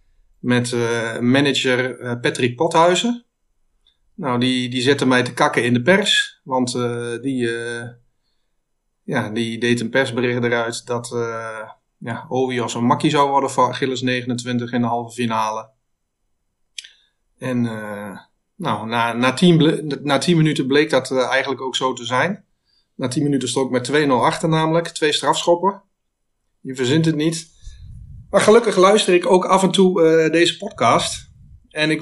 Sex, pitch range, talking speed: male, 125-160 Hz, 160 wpm